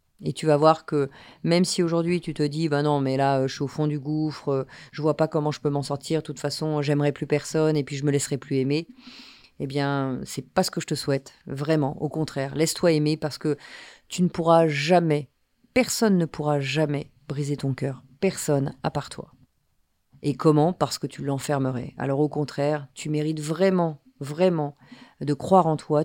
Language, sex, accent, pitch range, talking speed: French, female, French, 145-175 Hz, 210 wpm